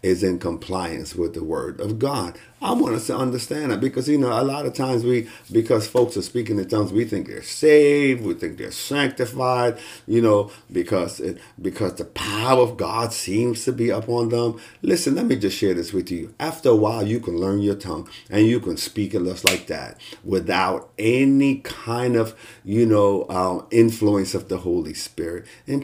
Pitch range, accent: 100-130 Hz, American